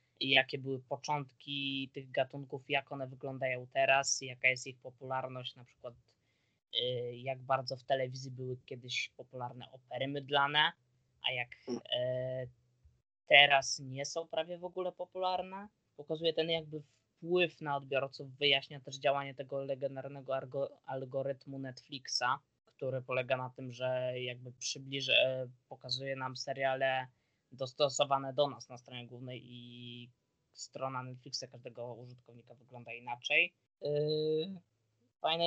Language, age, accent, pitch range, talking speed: Polish, 20-39, native, 125-145 Hz, 115 wpm